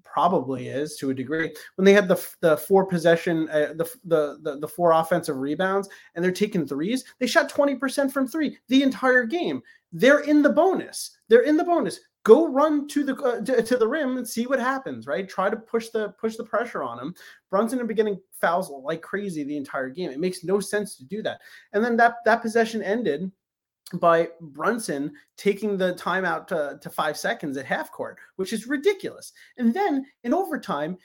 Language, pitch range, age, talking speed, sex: English, 160-270 Hz, 30-49, 205 wpm, male